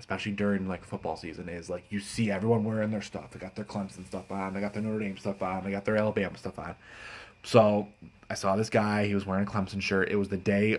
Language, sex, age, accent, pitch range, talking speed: English, male, 20-39, American, 90-105 Hz, 260 wpm